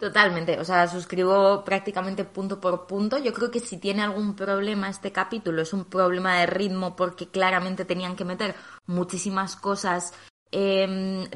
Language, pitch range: Spanish, 185-215 Hz